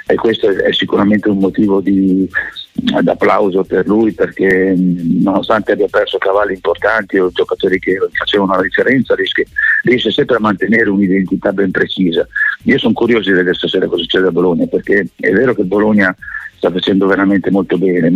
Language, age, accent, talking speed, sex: Italian, 50-69, native, 160 wpm, male